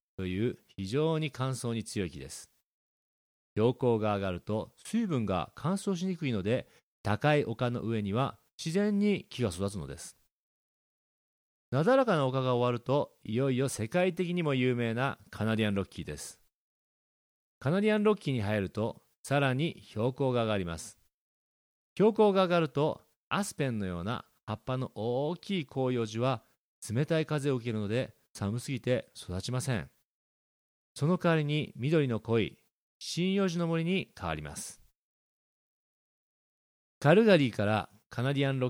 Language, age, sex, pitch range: Japanese, 40-59, male, 105-155 Hz